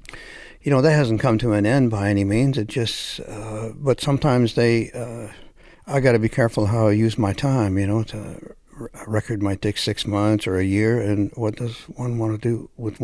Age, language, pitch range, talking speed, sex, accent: 60-79, English, 100-125 Hz, 225 wpm, male, American